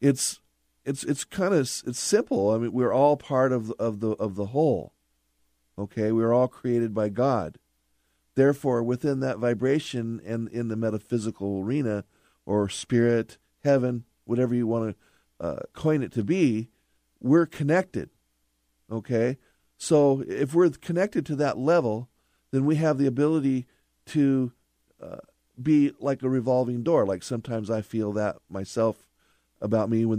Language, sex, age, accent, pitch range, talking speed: English, male, 50-69, American, 110-140 Hz, 150 wpm